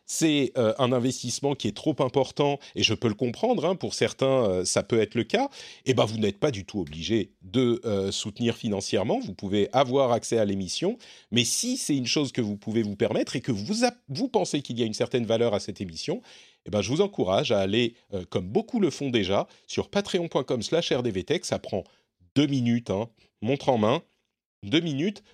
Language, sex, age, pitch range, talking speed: French, male, 40-59, 110-155 Hz, 215 wpm